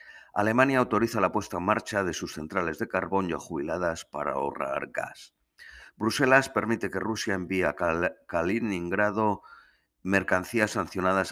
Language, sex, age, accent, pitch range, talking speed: Spanish, male, 50-69, Spanish, 85-105 Hz, 135 wpm